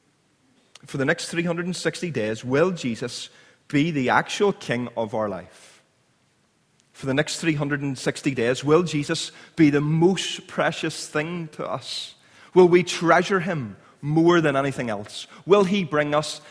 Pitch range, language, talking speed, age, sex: 115-155 Hz, English, 145 wpm, 30-49, male